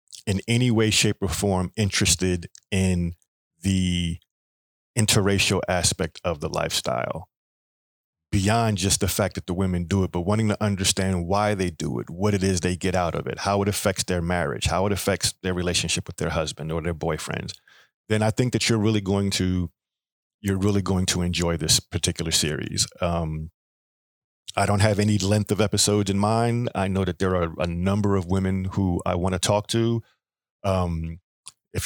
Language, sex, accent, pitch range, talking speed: English, male, American, 90-105 Hz, 185 wpm